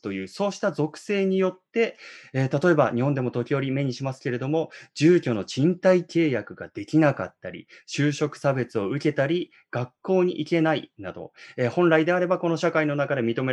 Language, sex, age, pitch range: Japanese, male, 20-39, 115-155 Hz